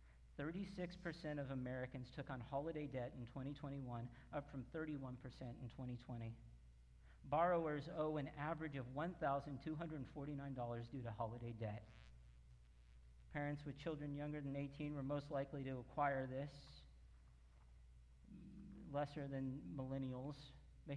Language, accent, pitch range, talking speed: English, American, 115-155 Hz, 110 wpm